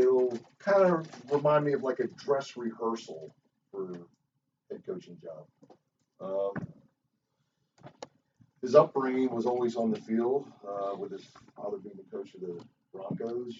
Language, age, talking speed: English, 40-59, 145 wpm